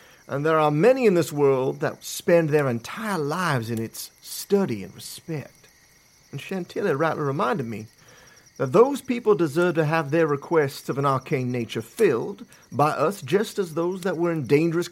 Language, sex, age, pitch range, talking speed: English, male, 40-59, 125-180 Hz, 175 wpm